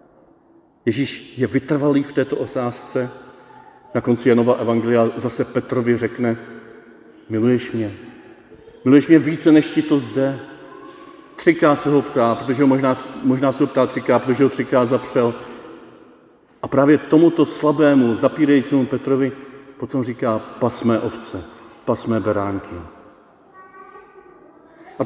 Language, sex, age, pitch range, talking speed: Czech, male, 40-59, 125-155 Hz, 120 wpm